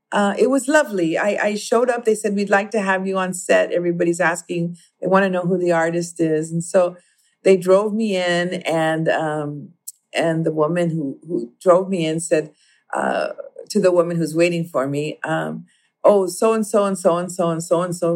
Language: English